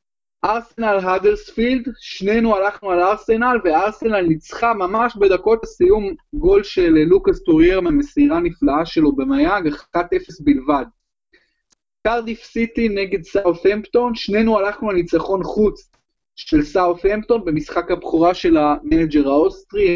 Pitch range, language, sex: 175-255 Hz, Hebrew, male